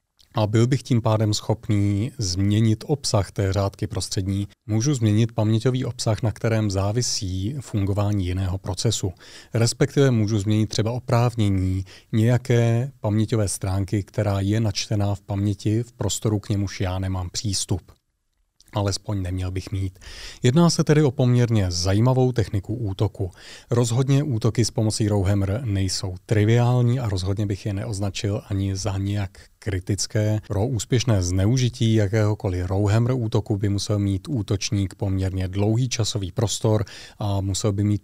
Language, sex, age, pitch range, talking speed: Czech, male, 30-49, 100-115 Hz, 135 wpm